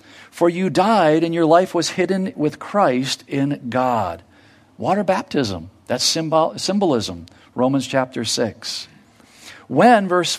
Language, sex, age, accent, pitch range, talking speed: English, male, 50-69, American, 125-180 Hz, 120 wpm